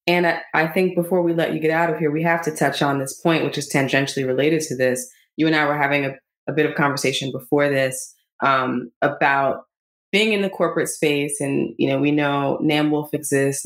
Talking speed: 225 wpm